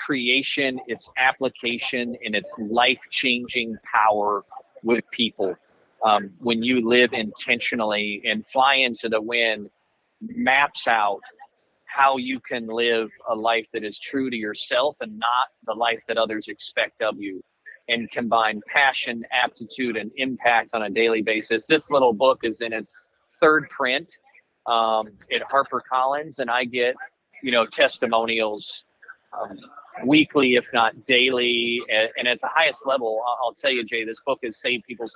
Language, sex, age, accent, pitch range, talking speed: English, male, 40-59, American, 110-125 Hz, 150 wpm